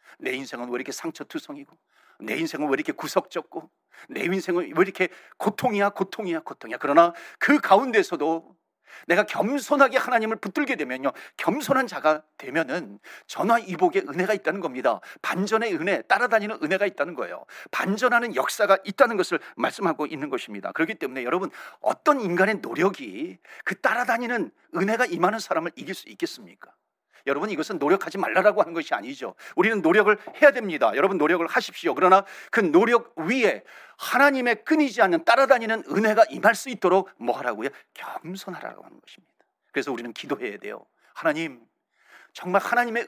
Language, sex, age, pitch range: Korean, male, 40-59, 190-275 Hz